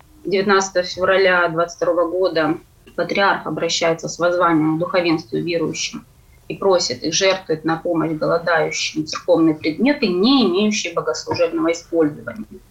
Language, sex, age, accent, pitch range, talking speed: Russian, female, 20-39, native, 170-230 Hz, 115 wpm